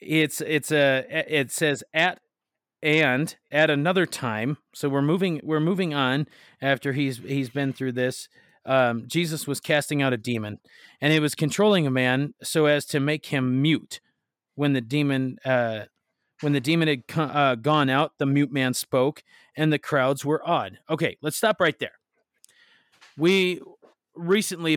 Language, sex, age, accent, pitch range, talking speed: English, male, 30-49, American, 130-155 Hz, 165 wpm